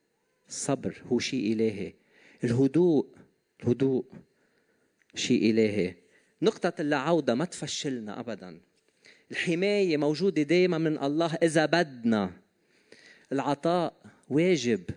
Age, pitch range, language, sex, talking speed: 40-59, 120-165 Hz, Arabic, male, 90 wpm